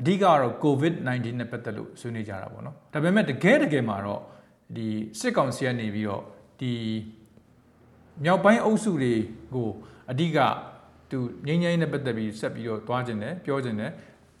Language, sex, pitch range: English, male, 115-175 Hz